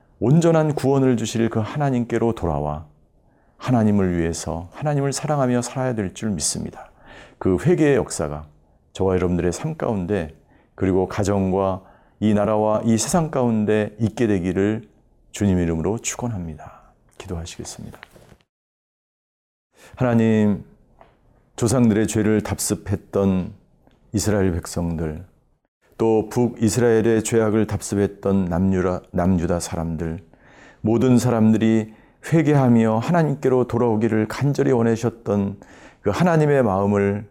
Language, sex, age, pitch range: Korean, male, 40-59, 95-125 Hz